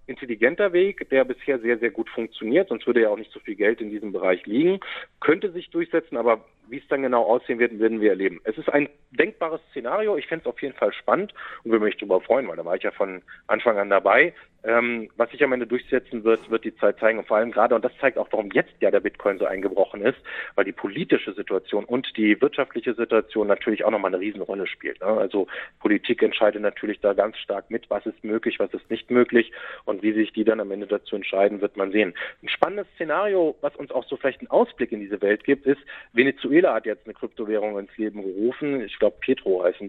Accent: German